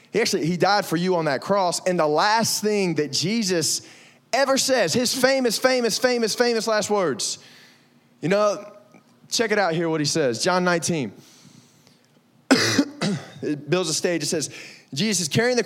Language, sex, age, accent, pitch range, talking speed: English, male, 20-39, American, 130-180 Hz, 170 wpm